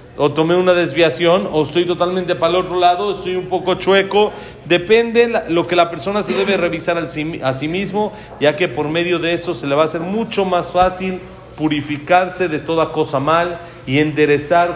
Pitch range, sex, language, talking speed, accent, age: 140-180 Hz, male, Spanish, 195 wpm, Mexican, 40-59